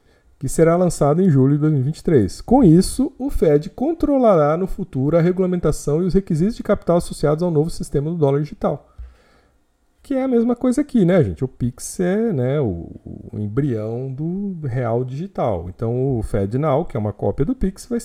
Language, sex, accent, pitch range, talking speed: Portuguese, male, Brazilian, 115-195 Hz, 185 wpm